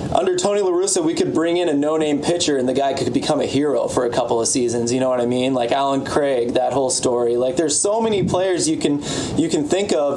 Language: English